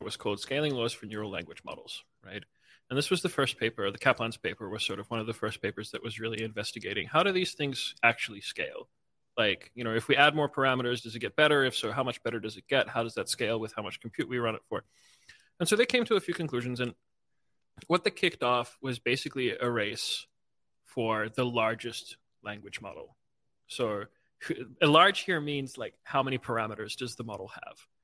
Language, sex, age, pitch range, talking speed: English, male, 20-39, 115-145 Hz, 220 wpm